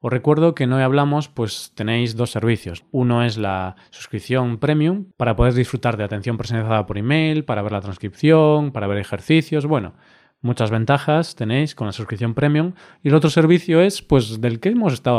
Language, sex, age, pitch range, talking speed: Spanish, male, 20-39, 115-155 Hz, 185 wpm